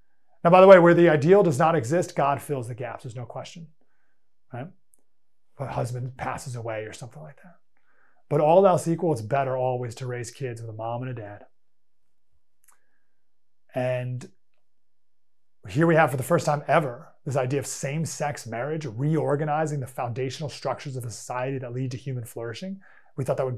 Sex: male